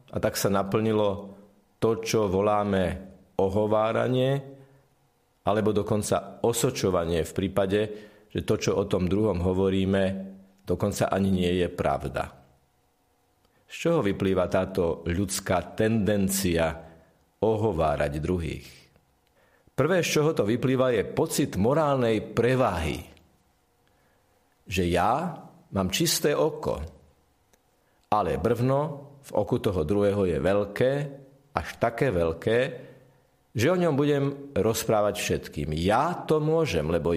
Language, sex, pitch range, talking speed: Slovak, male, 90-120 Hz, 110 wpm